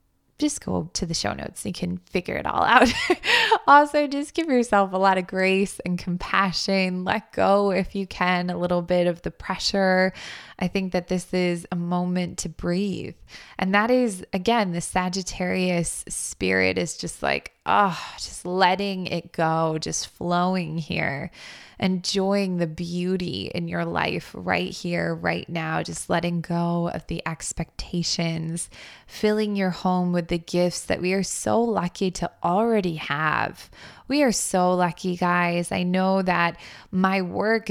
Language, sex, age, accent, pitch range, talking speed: English, female, 20-39, American, 170-195 Hz, 160 wpm